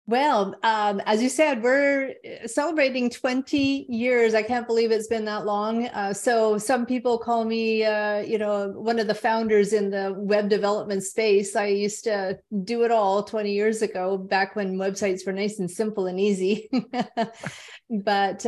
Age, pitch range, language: 30-49, 195-230 Hz, English